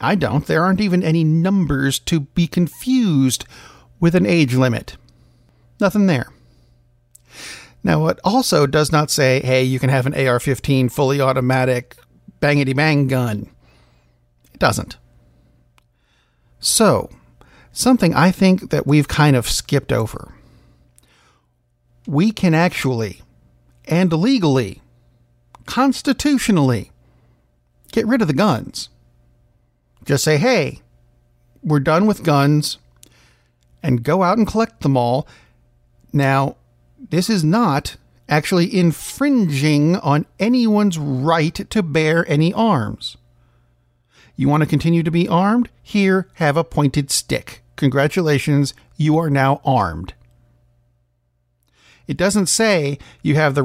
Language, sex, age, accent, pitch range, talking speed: English, male, 50-69, American, 105-165 Hz, 115 wpm